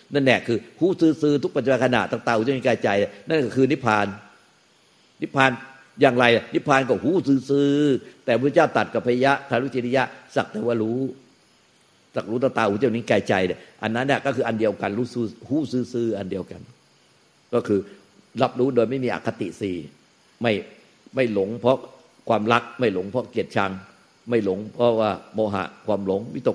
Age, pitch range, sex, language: 50-69, 105-130 Hz, male, Thai